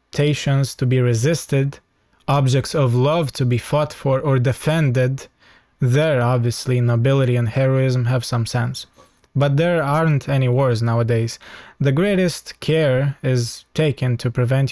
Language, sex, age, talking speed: Romanian, male, 20-39, 140 wpm